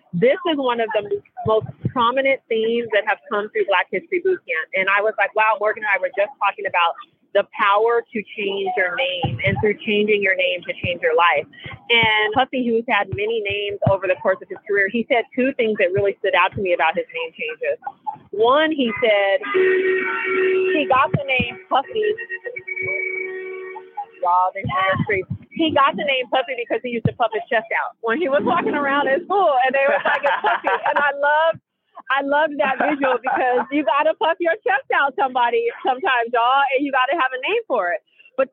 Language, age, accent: English, 30-49, American